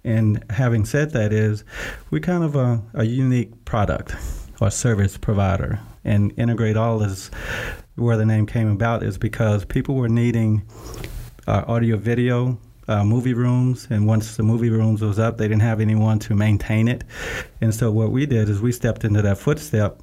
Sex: male